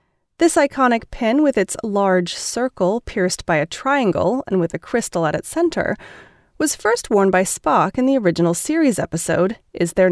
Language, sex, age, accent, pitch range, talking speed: English, female, 30-49, American, 175-255 Hz, 180 wpm